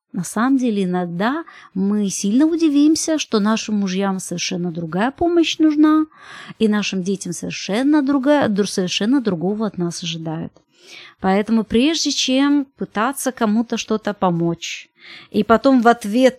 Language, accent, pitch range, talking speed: Russian, native, 190-255 Hz, 130 wpm